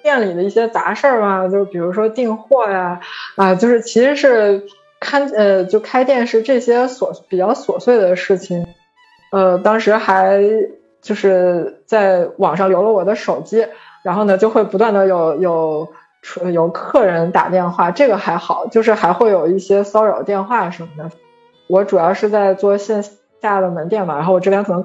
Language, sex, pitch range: Chinese, female, 180-220 Hz